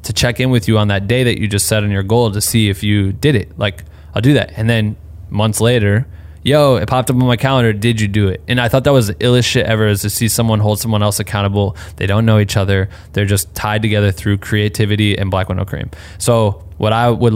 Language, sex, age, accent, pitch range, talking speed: English, male, 20-39, American, 100-115 Hz, 265 wpm